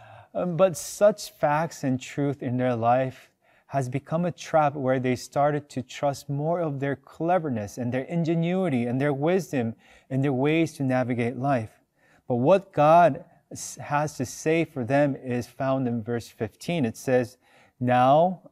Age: 30-49